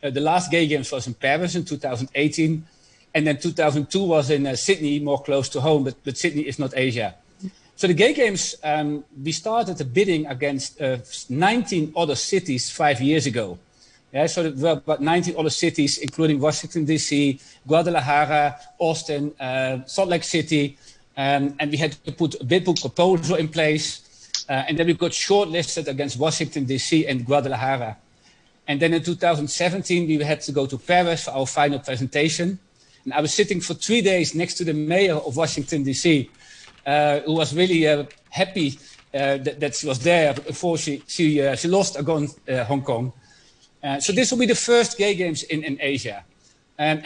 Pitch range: 140-170 Hz